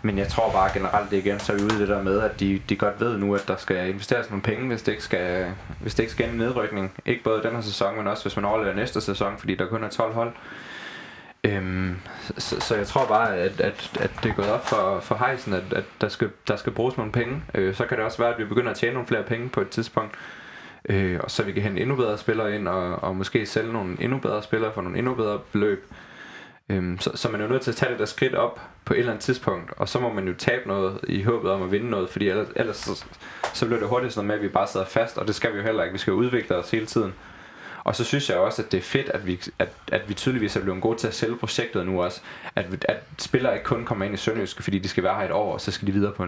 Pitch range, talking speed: 95-115 Hz, 290 wpm